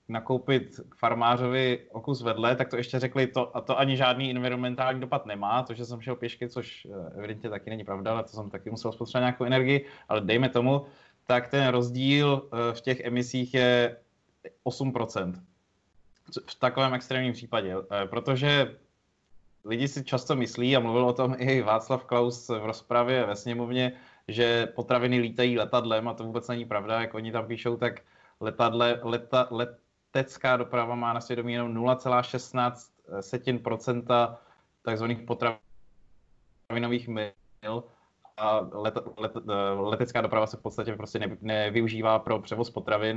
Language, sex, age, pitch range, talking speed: Slovak, male, 20-39, 110-125 Hz, 145 wpm